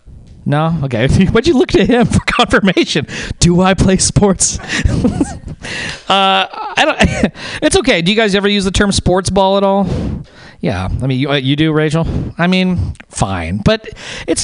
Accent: American